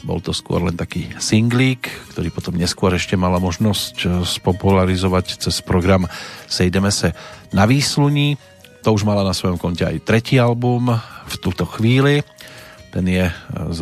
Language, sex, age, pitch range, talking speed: Slovak, male, 40-59, 90-115 Hz, 150 wpm